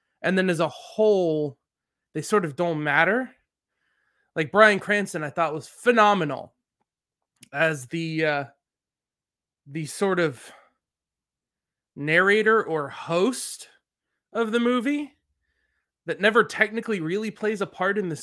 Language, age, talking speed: English, 20-39, 125 wpm